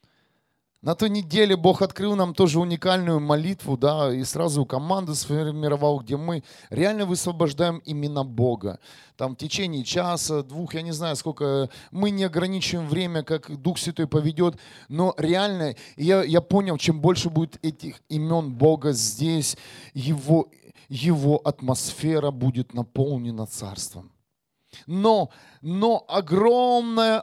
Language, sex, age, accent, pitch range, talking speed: Russian, male, 30-49, native, 150-205 Hz, 130 wpm